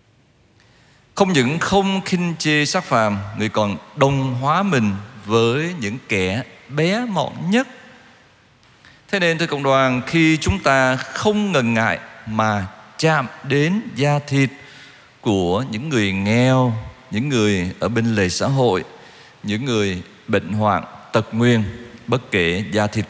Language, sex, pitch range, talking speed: Vietnamese, male, 110-170 Hz, 145 wpm